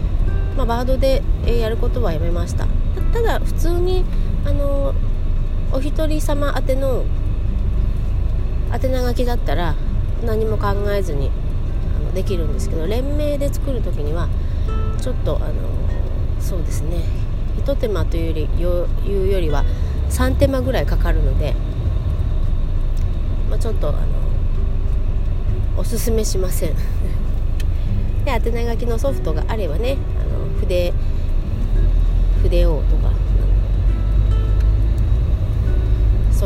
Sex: female